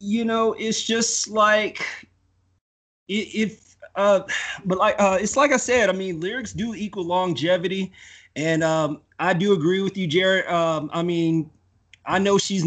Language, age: English, 30-49